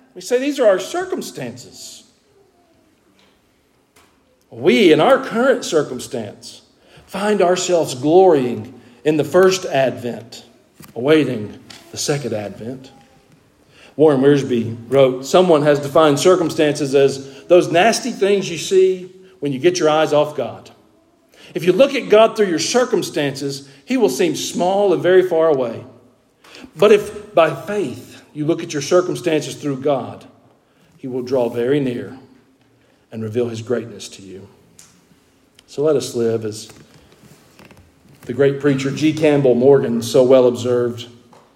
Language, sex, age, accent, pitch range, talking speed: English, male, 50-69, American, 120-165 Hz, 135 wpm